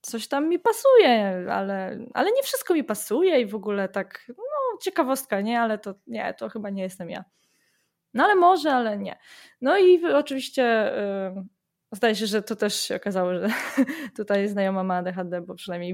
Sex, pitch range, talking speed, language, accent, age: female, 190-260 Hz, 185 wpm, Polish, native, 20-39